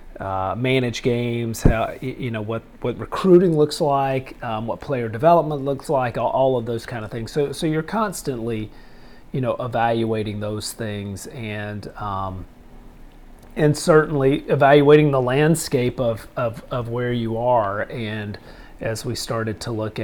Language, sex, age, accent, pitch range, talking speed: English, male, 40-59, American, 110-135 Hz, 155 wpm